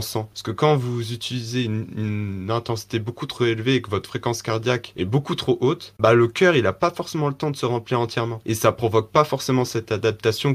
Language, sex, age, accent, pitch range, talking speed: French, male, 20-39, French, 110-130 Hz, 235 wpm